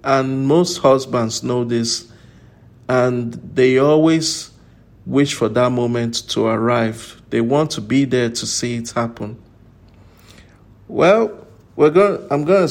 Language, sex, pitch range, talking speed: English, male, 115-140 Hz, 130 wpm